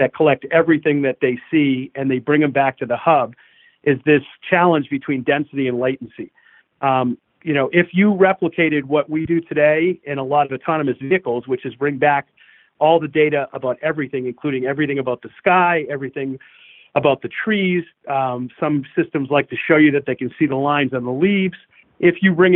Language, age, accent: English, 40-59, American